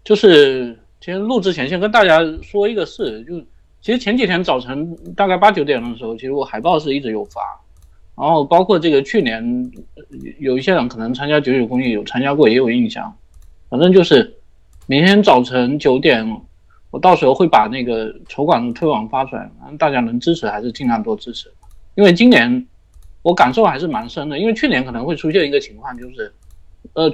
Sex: male